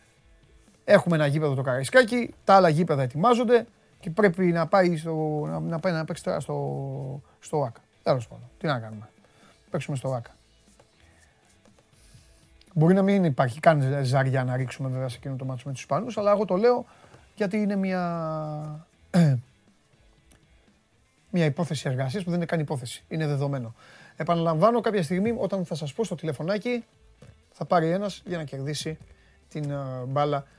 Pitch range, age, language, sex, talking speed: 135-180 Hz, 30-49, Greek, male, 155 wpm